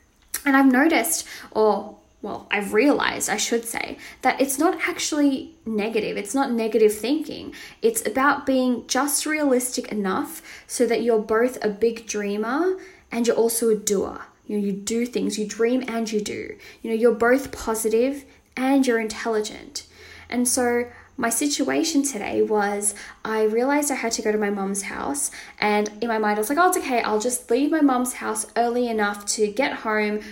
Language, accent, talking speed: English, Australian, 180 wpm